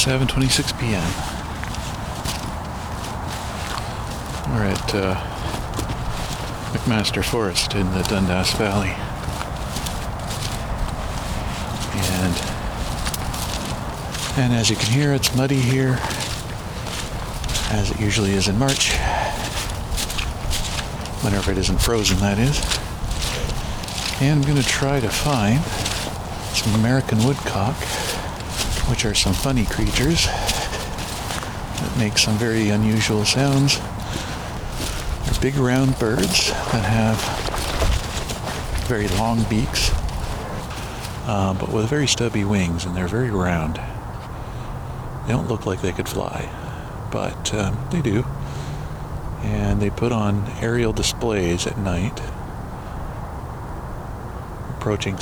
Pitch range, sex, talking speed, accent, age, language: 95-120 Hz, male, 100 wpm, American, 50-69, English